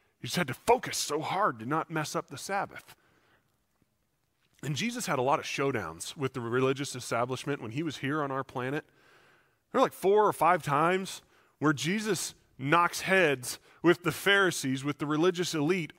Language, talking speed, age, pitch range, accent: English, 185 wpm, 30-49, 130-205 Hz, American